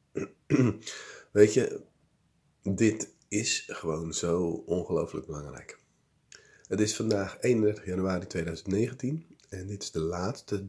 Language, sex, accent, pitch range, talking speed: Dutch, male, Dutch, 90-110 Hz, 105 wpm